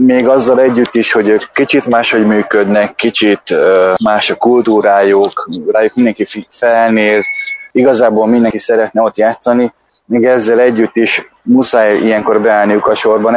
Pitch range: 105-125 Hz